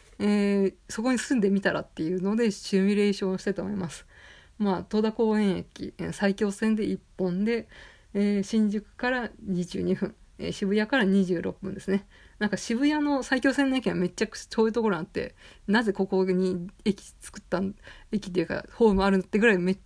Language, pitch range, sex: Japanese, 190-230 Hz, female